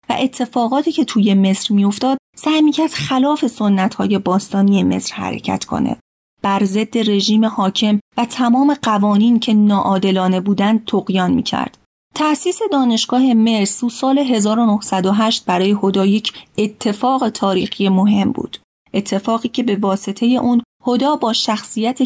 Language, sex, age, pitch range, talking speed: Persian, female, 30-49, 200-250 Hz, 125 wpm